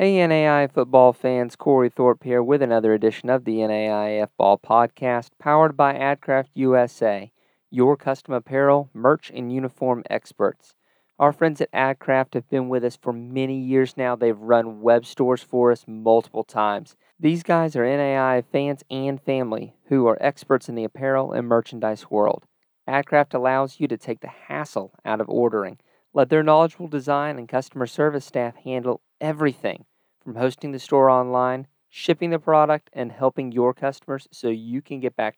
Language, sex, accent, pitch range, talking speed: English, male, American, 120-140 Hz, 170 wpm